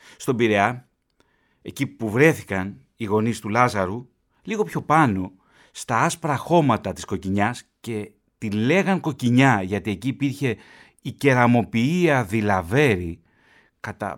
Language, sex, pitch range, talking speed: Greek, male, 105-145 Hz, 120 wpm